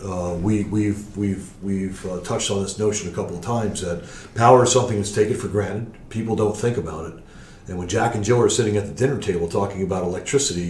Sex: male